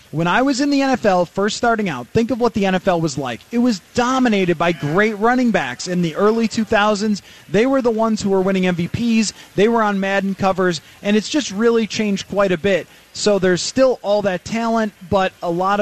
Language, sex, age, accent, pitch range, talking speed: English, male, 30-49, American, 170-215 Hz, 215 wpm